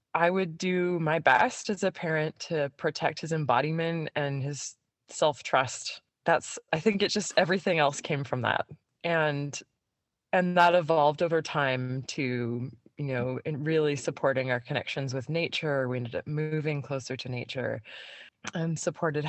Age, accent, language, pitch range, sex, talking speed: 20-39, American, English, 130-165 Hz, female, 155 wpm